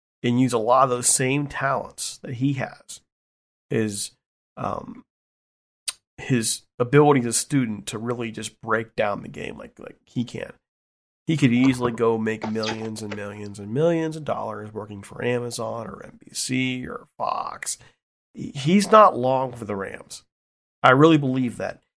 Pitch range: 115-145 Hz